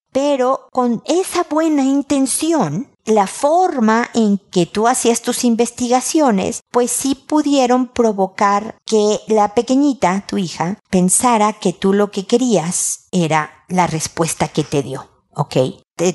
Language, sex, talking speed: Spanish, female, 135 wpm